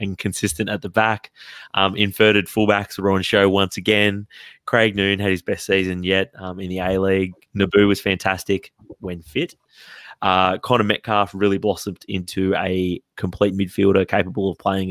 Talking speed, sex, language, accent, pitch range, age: 165 wpm, male, English, Australian, 90-100 Hz, 20-39